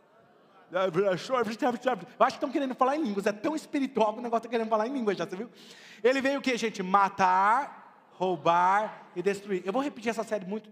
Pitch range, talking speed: 170-265 Hz, 195 wpm